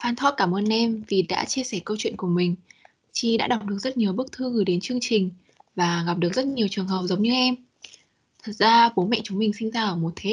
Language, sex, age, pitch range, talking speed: Vietnamese, female, 20-39, 190-245 Hz, 260 wpm